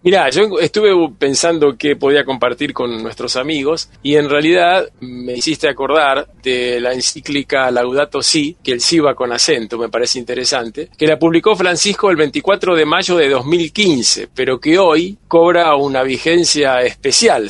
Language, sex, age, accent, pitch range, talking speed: Spanish, male, 40-59, Argentinian, 135-185 Hz, 160 wpm